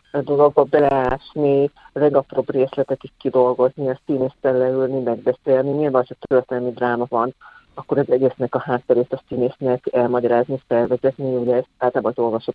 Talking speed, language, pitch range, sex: 150 wpm, Hungarian, 125-145 Hz, female